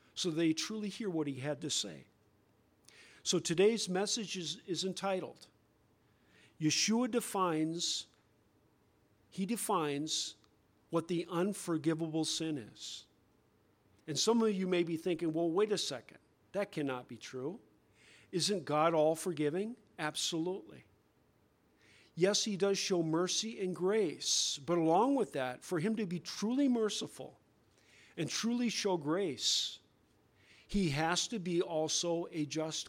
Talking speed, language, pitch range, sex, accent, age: 130 wpm, English, 150-195 Hz, male, American, 50-69